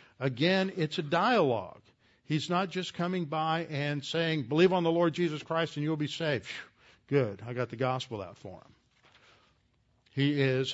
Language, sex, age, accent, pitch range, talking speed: English, male, 50-69, American, 125-155 Hz, 175 wpm